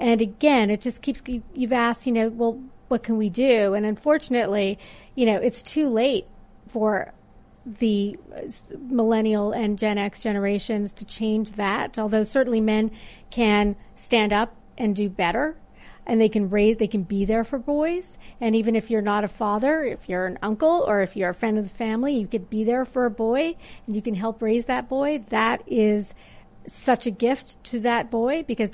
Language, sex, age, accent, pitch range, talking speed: English, female, 40-59, American, 215-250 Hz, 190 wpm